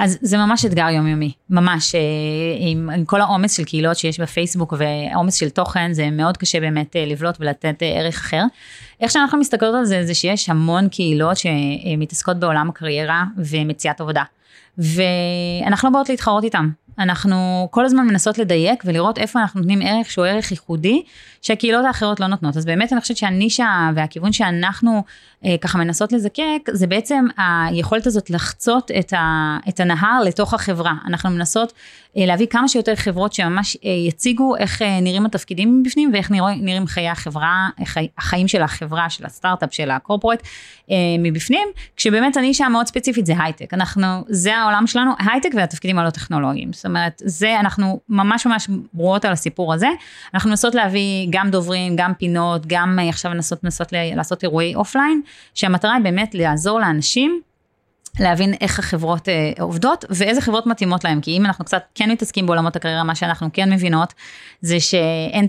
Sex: female